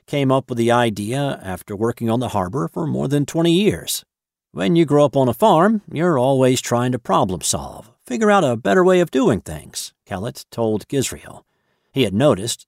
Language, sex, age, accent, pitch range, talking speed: English, male, 50-69, American, 105-150 Hz, 200 wpm